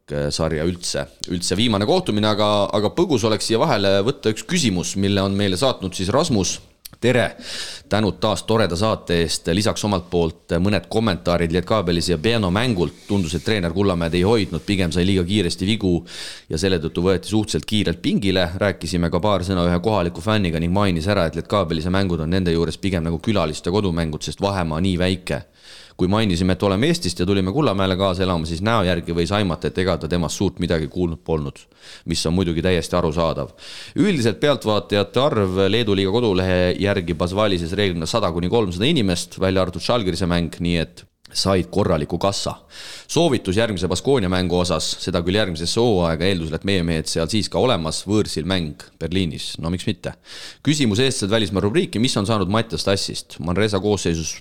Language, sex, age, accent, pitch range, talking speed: English, male, 30-49, Finnish, 85-105 Hz, 175 wpm